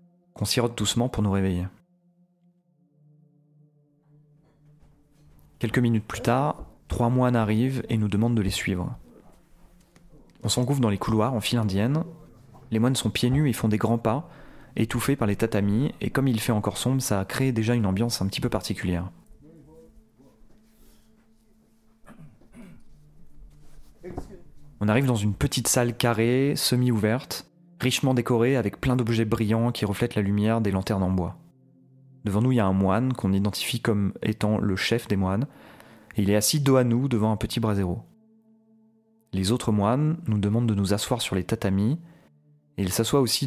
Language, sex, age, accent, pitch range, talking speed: French, male, 30-49, French, 105-145 Hz, 165 wpm